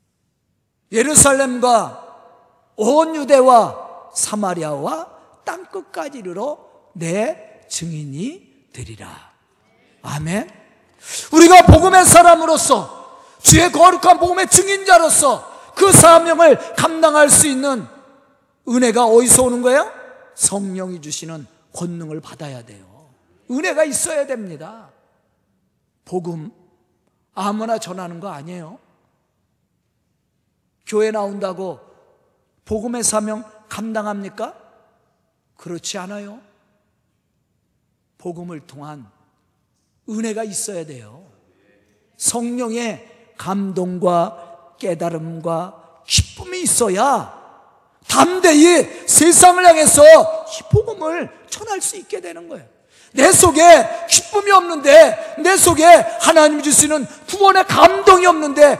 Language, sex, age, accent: Korean, male, 50-69, native